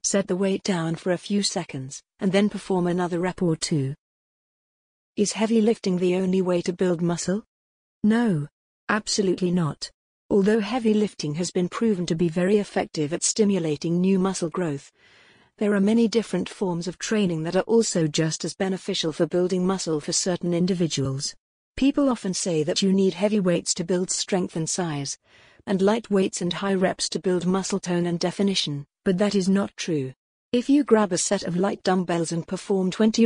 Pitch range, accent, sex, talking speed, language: 170-200 Hz, British, female, 185 wpm, English